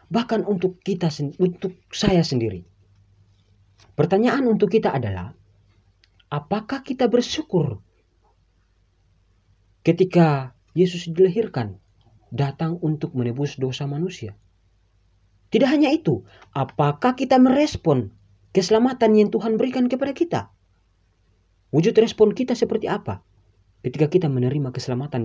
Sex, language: male, Indonesian